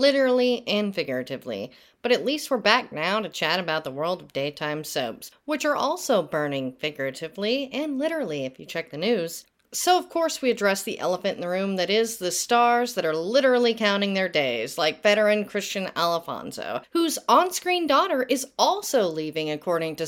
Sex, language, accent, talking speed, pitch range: female, English, American, 180 wpm, 170-270 Hz